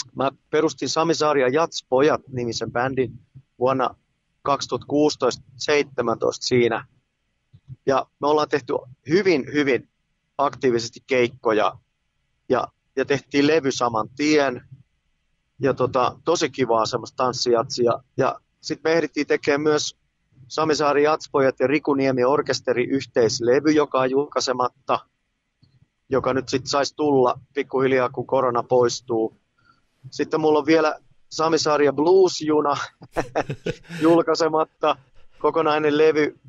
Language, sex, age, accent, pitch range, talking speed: Finnish, male, 30-49, native, 125-150 Hz, 100 wpm